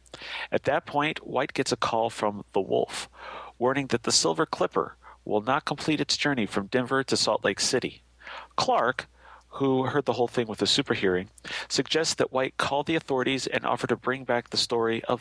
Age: 40-59